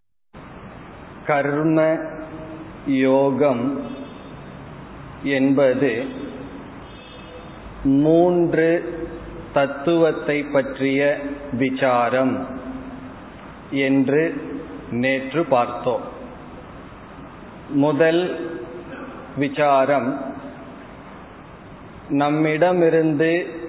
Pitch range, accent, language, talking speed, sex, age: 140-170 Hz, native, Tamil, 35 wpm, male, 40-59